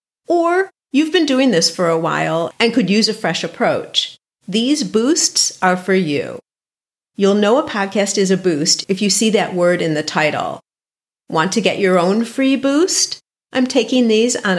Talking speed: 185 wpm